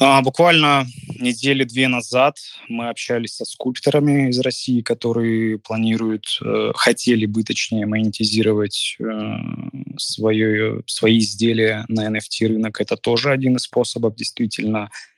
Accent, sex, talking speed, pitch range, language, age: native, male, 105 wpm, 105-130 Hz, Russian, 20-39